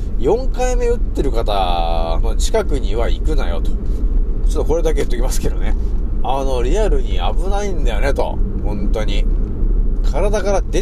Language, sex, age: Japanese, male, 30-49